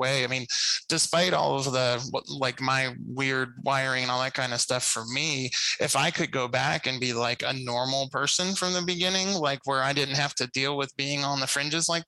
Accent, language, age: American, English, 20-39